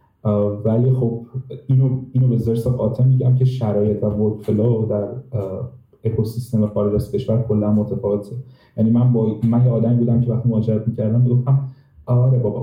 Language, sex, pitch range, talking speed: Persian, male, 110-130 Hz, 150 wpm